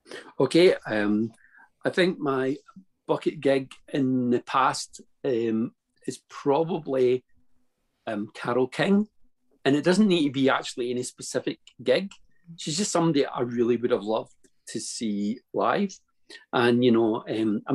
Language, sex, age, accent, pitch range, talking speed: English, male, 50-69, British, 100-135 Hz, 140 wpm